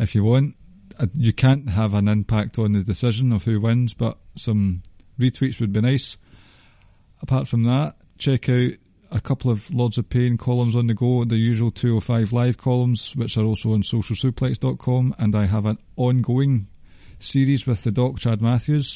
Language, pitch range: English, 105-125 Hz